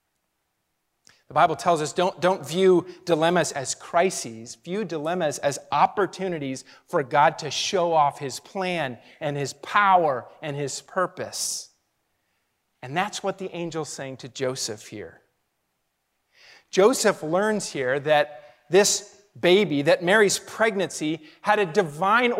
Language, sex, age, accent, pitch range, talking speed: English, male, 40-59, American, 160-240 Hz, 130 wpm